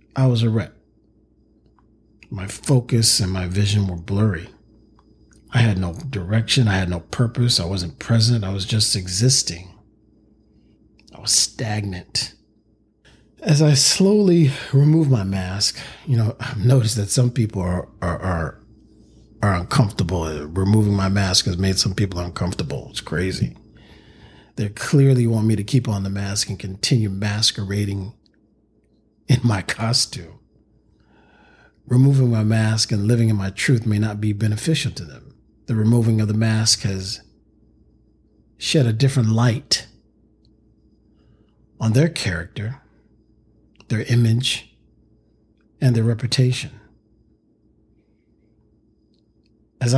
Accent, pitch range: American, 105-120 Hz